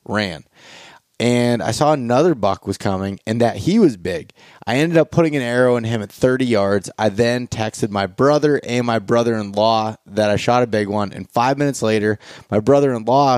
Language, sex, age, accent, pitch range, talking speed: English, male, 20-39, American, 105-125 Hz, 195 wpm